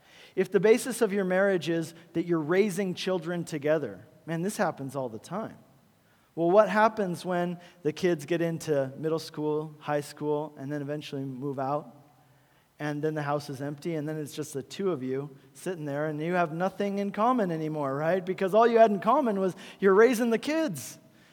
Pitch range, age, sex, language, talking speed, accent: 150-190 Hz, 40-59, male, English, 195 wpm, American